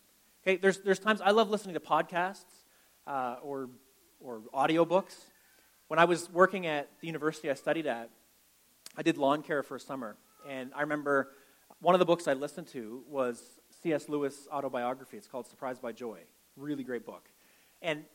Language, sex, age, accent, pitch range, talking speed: English, male, 30-49, American, 140-175 Hz, 180 wpm